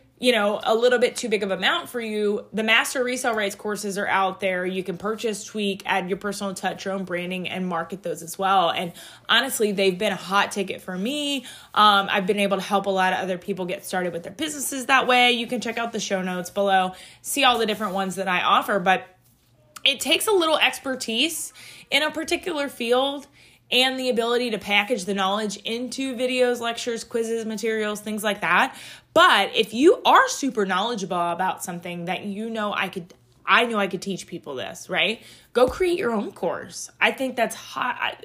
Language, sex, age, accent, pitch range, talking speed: English, female, 20-39, American, 190-245 Hz, 210 wpm